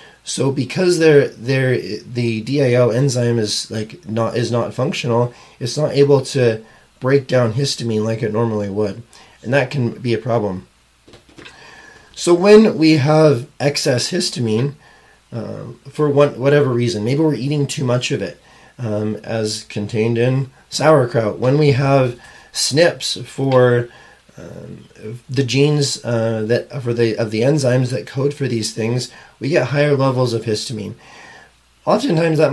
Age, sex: 30-49, male